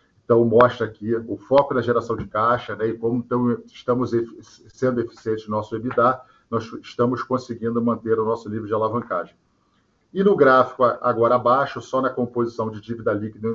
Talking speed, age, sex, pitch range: 170 wpm, 40-59, male, 110-130 Hz